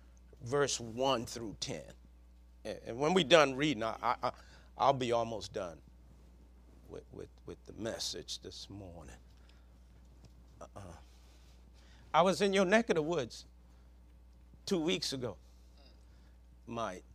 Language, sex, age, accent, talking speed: English, male, 50-69, American, 125 wpm